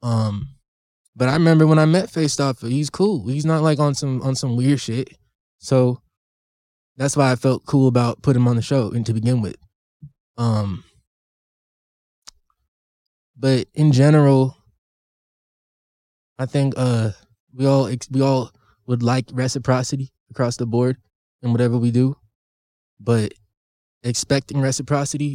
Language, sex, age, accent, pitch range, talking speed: English, male, 20-39, American, 110-135 Hz, 140 wpm